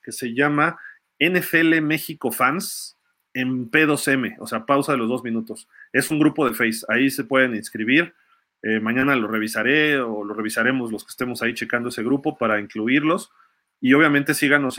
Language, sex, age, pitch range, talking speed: Spanish, male, 40-59, 115-145 Hz, 175 wpm